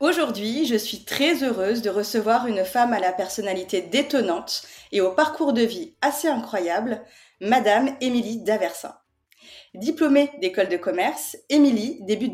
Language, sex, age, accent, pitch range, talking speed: French, female, 30-49, French, 205-290 Hz, 140 wpm